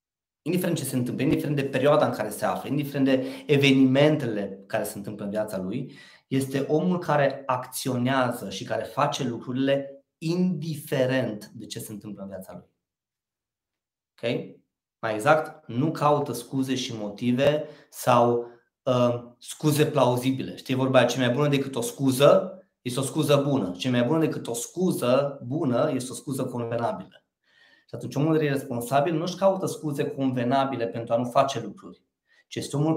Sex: male